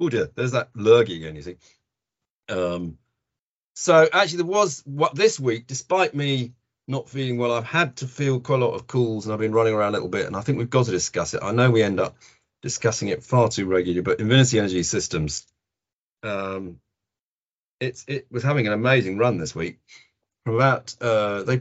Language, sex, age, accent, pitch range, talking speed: English, male, 40-59, British, 105-130 Hz, 205 wpm